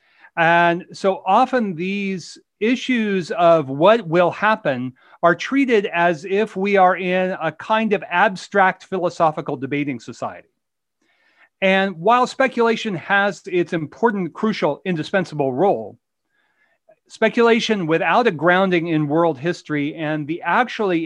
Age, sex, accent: 40-59, male, American